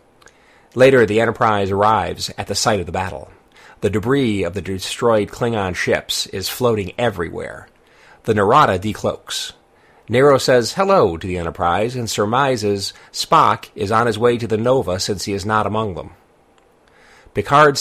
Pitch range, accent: 100-120 Hz, American